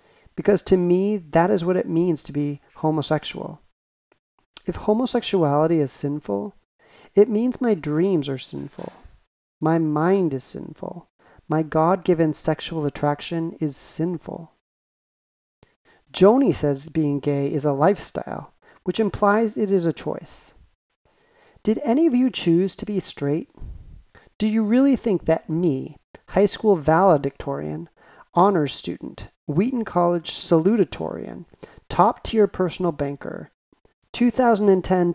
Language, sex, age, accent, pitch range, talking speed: English, male, 40-59, American, 155-195 Hz, 120 wpm